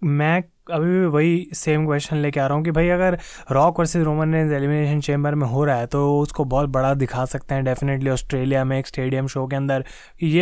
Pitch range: 140-170 Hz